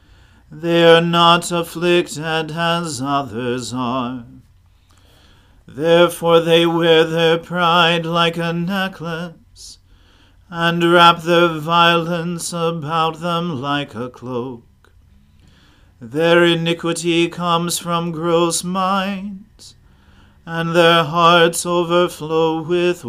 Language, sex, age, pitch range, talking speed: English, male, 40-59, 120-170 Hz, 90 wpm